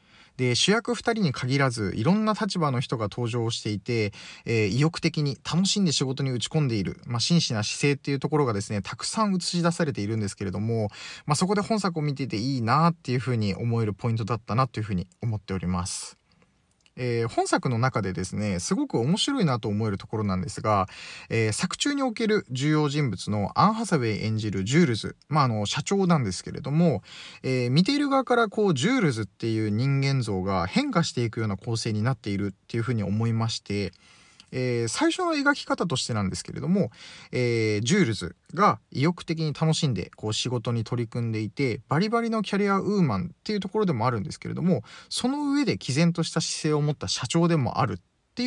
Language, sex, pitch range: Japanese, male, 110-170 Hz